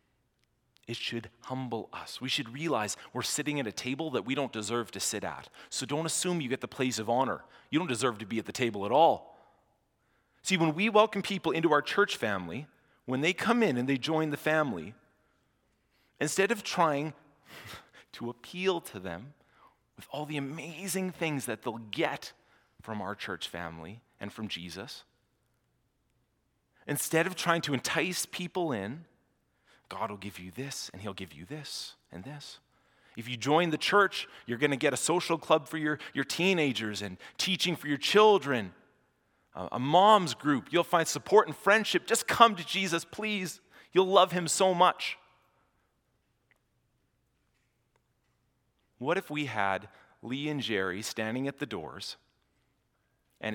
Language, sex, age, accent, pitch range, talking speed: English, male, 30-49, American, 115-170 Hz, 165 wpm